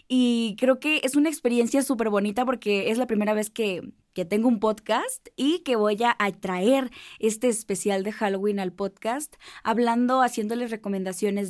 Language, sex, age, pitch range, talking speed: Spanish, female, 20-39, 200-255 Hz, 165 wpm